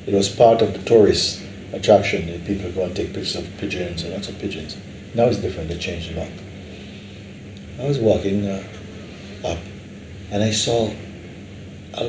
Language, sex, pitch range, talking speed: English, male, 100-130 Hz, 175 wpm